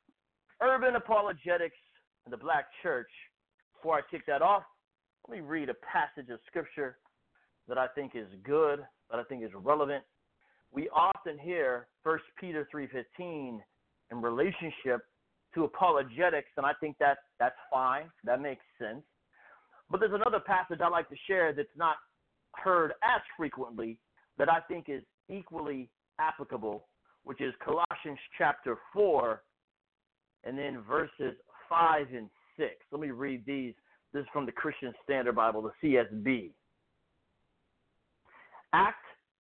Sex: male